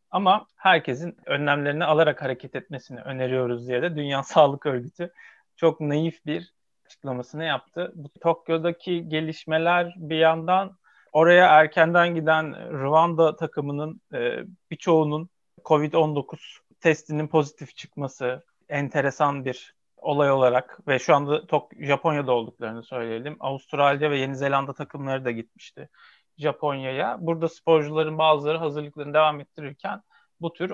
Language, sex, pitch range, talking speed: Turkish, male, 135-175 Hz, 115 wpm